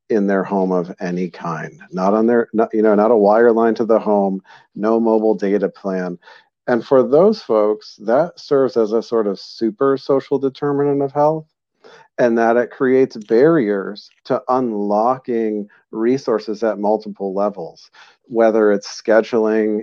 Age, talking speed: 50-69, 155 wpm